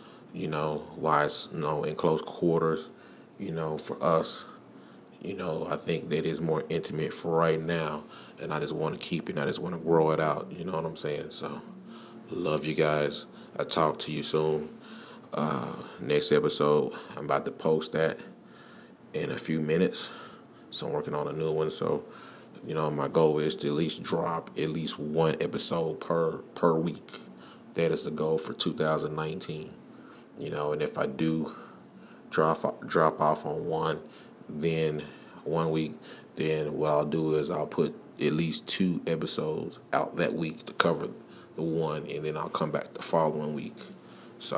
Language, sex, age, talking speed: English, male, 30-49, 180 wpm